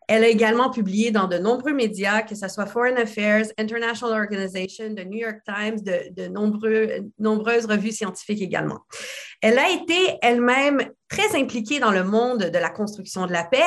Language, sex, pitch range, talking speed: French, female, 200-240 Hz, 180 wpm